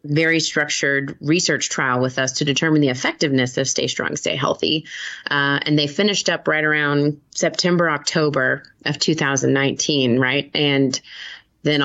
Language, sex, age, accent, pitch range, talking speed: English, female, 30-49, American, 140-170 Hz, 145 wpm